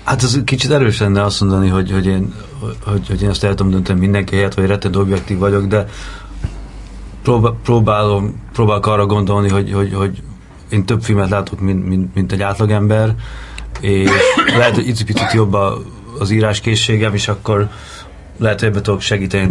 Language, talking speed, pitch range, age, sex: Hungarian, 165 wpm, 95-105 Hz, 30-49, male